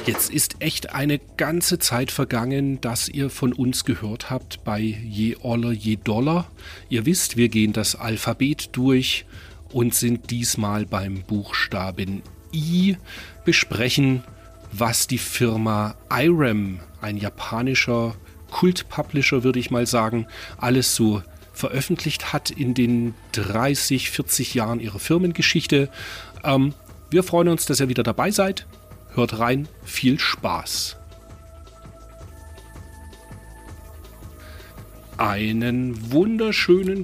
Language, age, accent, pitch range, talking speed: German, 40-59, German, 105-145 Hz, 110 wpm